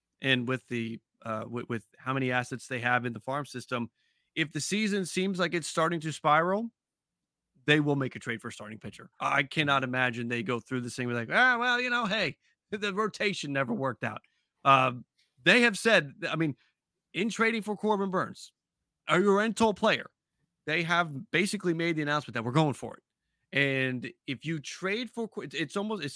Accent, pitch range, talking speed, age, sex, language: American, 125-175 Hz, 195 wpm, 30-49, male, English